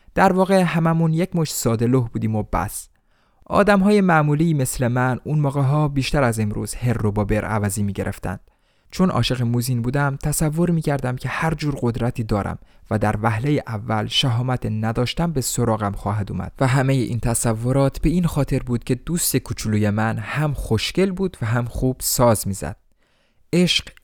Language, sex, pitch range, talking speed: Persian, male, 110-145 Hz, 160 wpm